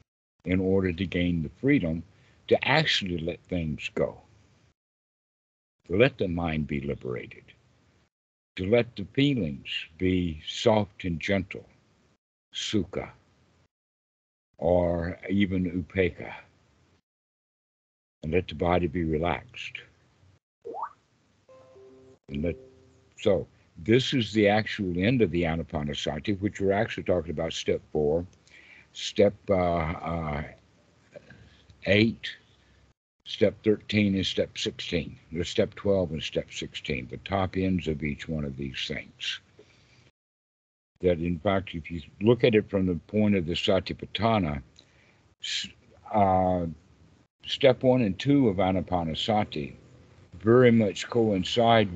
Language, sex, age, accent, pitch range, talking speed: English, male, 60-79, American, 85-105 Hz, 115 wpm